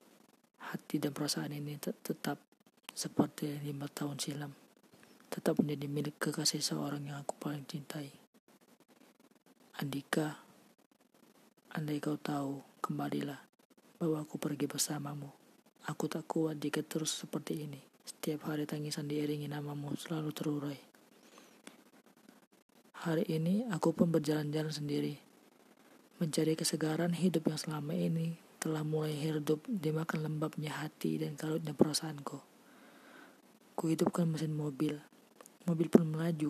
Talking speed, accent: 110 wpm, native